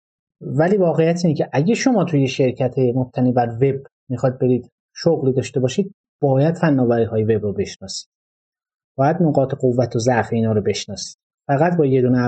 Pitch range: 120-160 Hz